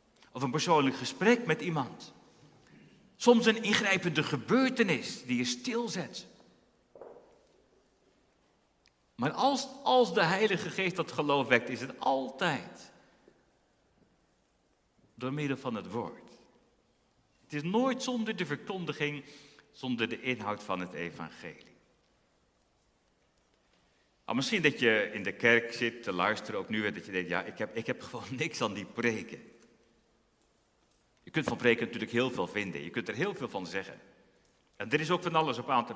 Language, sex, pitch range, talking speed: Dutch, male, 120-185 Hz, 150 wpm